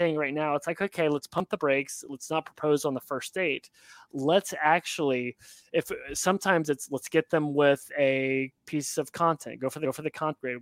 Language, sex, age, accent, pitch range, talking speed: English, male, 30-49, American, 135-165 Hz, 210 wpm